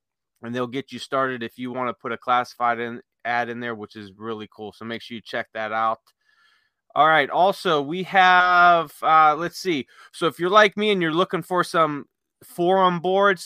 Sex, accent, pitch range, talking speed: male, American, 120-160 Hz, 200 wpm